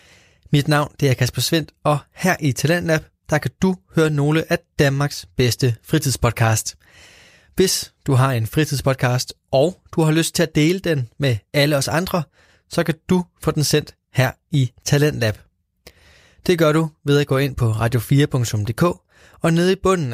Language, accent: Danish, native